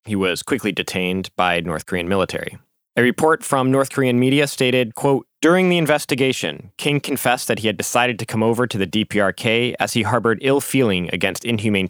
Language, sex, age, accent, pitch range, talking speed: English, male, 20-39, American, 100-130 Hz, 190 wpm